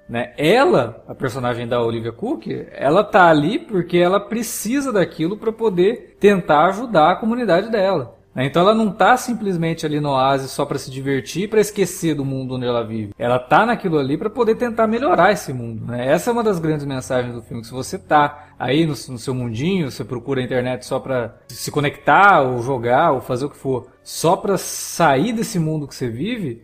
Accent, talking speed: Brazilian, 205 wpm